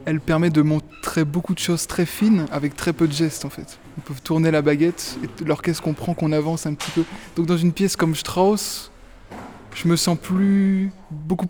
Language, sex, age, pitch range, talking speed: French, male, 20-39, 145-175 Hz, 210 wpm